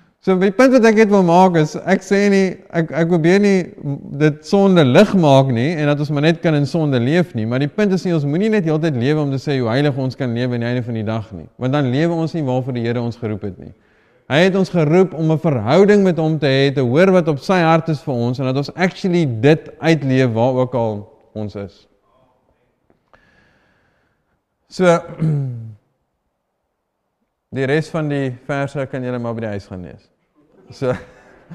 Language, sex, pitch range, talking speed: English, male, 125-170 Hz, 215 wpm